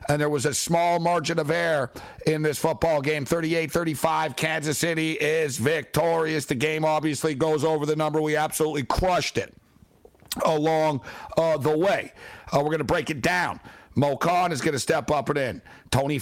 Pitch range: 130-155 Hz